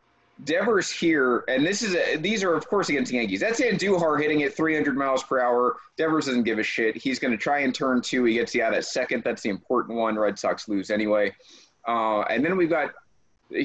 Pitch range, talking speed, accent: 130-190 Hz, 235 wpm, American